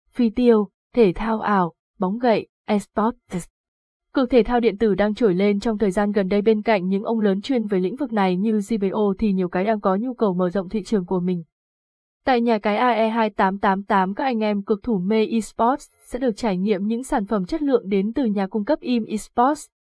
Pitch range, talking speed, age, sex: 195-240 Hz, 220 wpm, 20-39, female